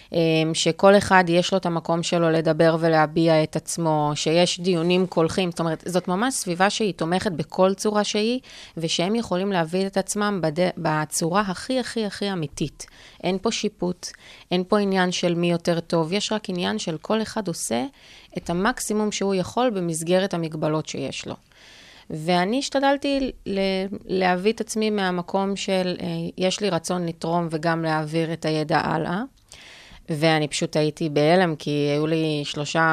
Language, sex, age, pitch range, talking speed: Hebrew, female, 30-49, 155-190 Hz, 155 wpm